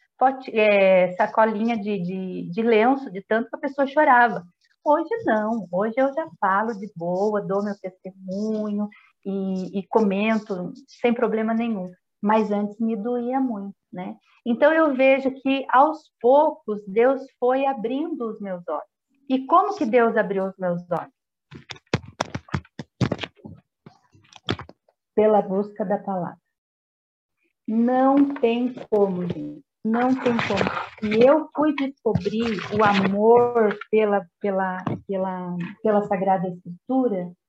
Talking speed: 120 wpm